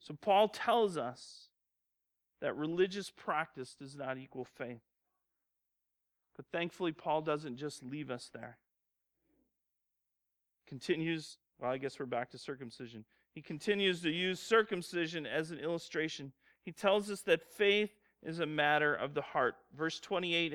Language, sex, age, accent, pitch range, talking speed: English, male, 40-59, American, 115-170 Hz, 140 wpm